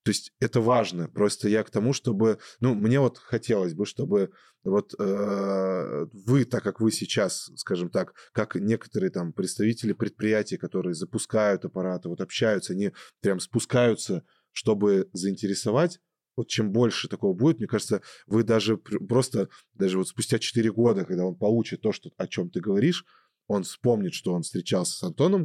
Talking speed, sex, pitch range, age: 165 wpm, male, 100-130 Hz, 20-39